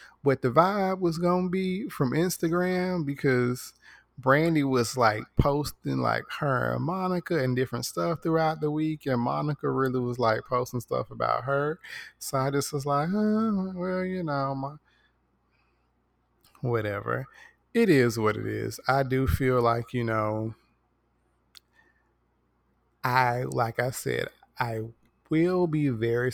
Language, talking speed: English, 145 wpm